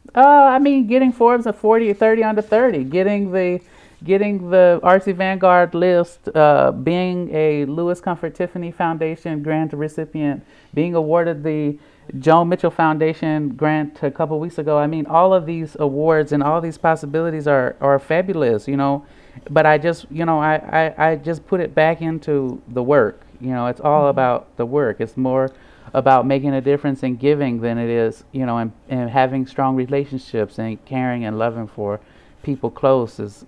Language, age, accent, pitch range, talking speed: English, 30-49, American, 115-160 Hz, 180 wpm